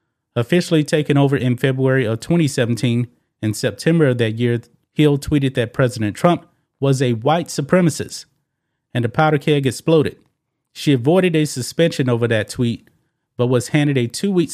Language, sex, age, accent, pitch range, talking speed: English, male, 30-49, American, 120-150 Hz, 155 wpm